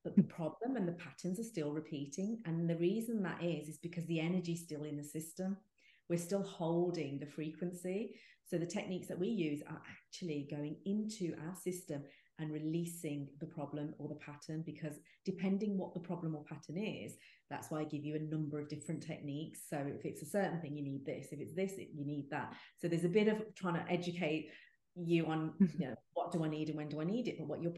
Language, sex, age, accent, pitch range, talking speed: English, female, 30-49, British, 150-175 Hz, 220 wpm